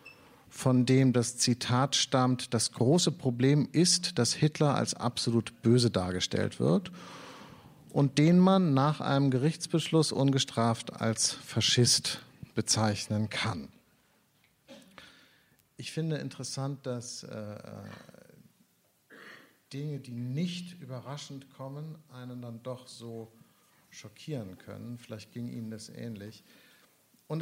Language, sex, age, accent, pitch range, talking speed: German, male, 50-69, German, 115-150 Hz, 105 wpm